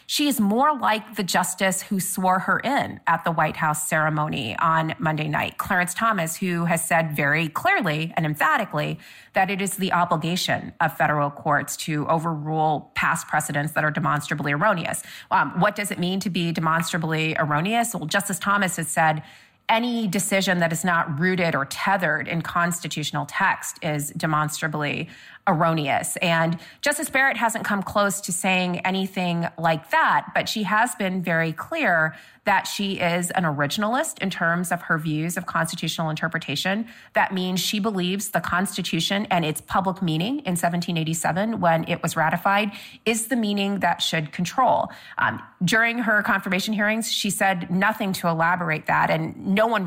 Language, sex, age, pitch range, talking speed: English, female, 30-49, 160-200 Hz, 165 wpm